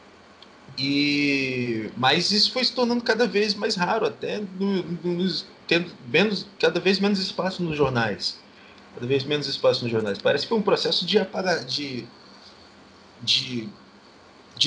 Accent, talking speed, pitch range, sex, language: Brazilian, 155 wpm, 150-210 Hz, male, Portuguese